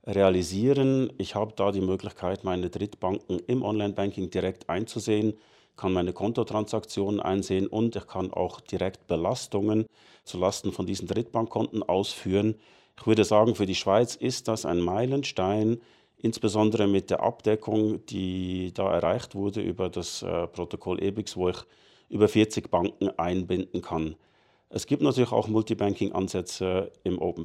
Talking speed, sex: 140 wpm, male